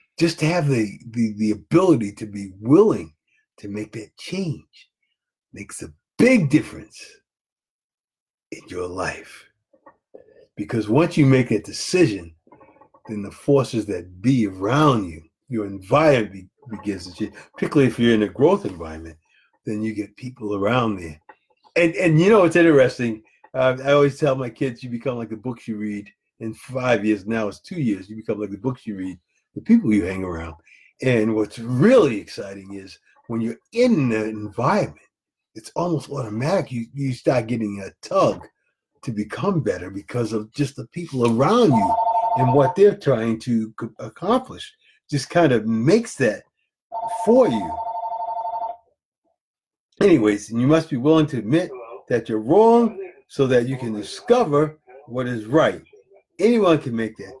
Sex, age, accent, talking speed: male, 50-69, American, 160 wpm